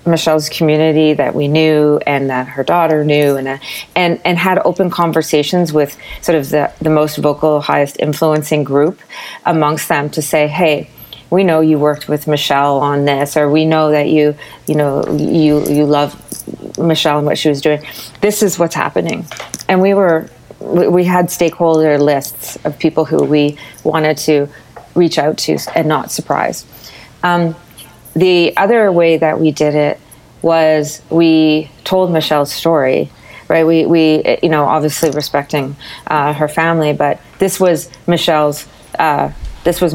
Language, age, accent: English, 30-49, American